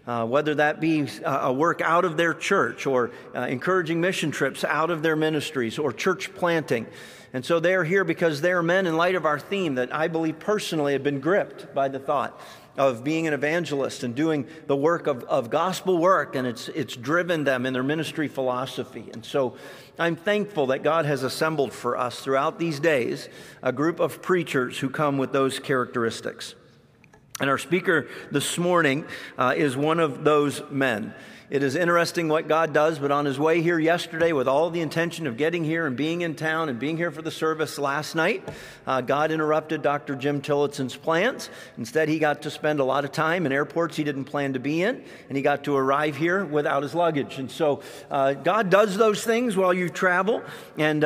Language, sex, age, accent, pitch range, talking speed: English, male, 50-69, American, 140-170 Hz, 205 wpm